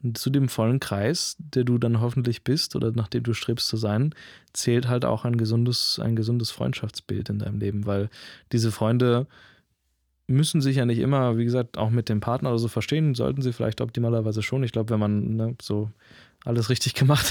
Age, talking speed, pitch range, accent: 20-39, 200 wpm, 110-125 Hz, German